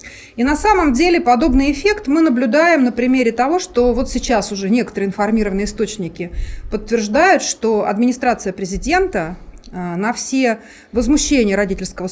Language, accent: Russian, native